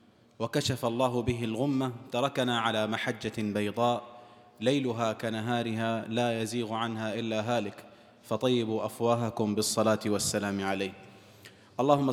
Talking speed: 105 wpm